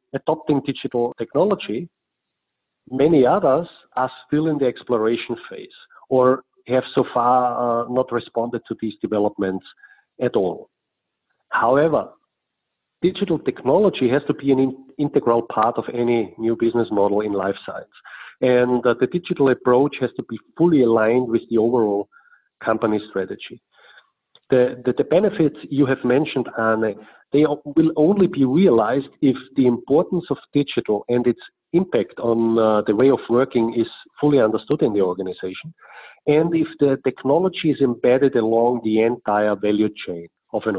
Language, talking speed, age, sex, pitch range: English, 150 wpm, 40-59, male, 115-145 Hz